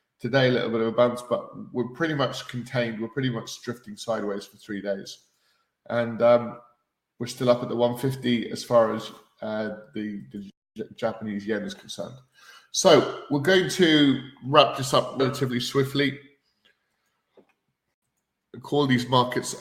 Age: 20-39